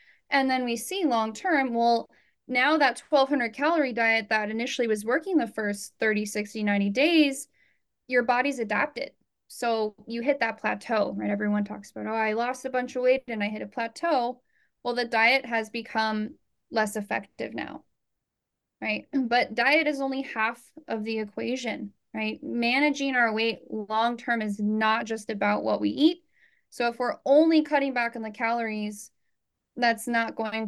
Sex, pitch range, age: female, 210-250 Hz, 10-29